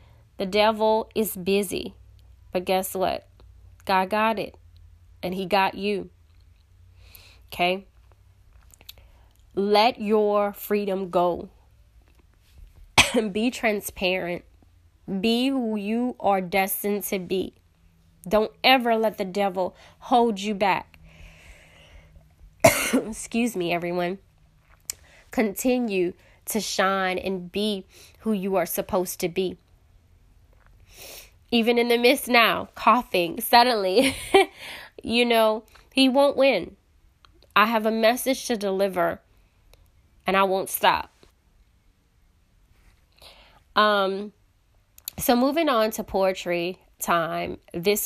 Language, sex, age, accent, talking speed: English, female, 20-39, American, 100 wpm